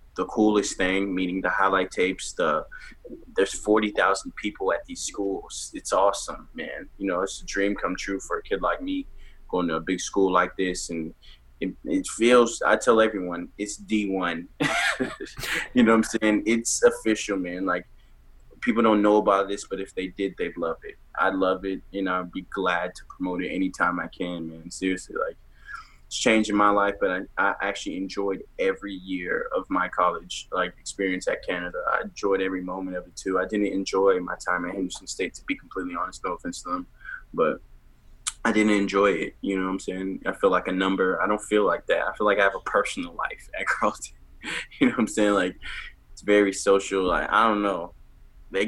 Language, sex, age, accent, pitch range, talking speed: English, male, 20-39, American, 90-105 Hz, 205 wpm